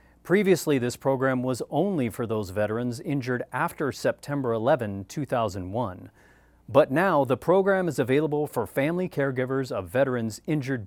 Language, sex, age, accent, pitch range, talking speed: English, male, 40-59, American, 105-150 Hz, 140 wpm